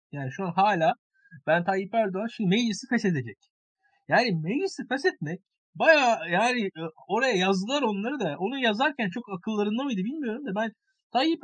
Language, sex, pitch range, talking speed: Turkish, male, 155-225 Hz, 155 wpm